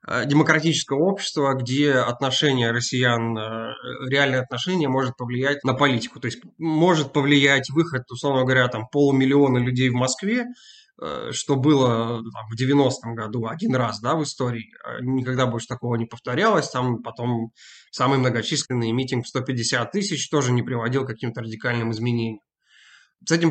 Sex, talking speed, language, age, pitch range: male, 140 wpm, Russian, 20-39, 125-155 Hz